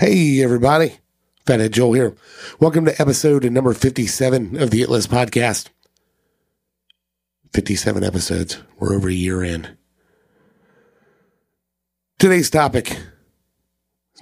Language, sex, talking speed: English, male, 105 wpm